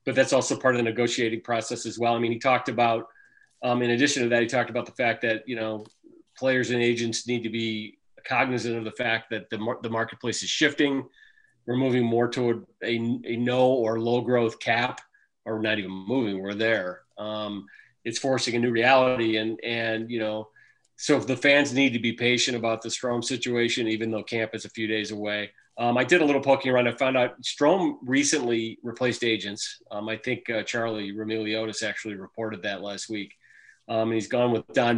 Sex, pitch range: male, 110-125 Hz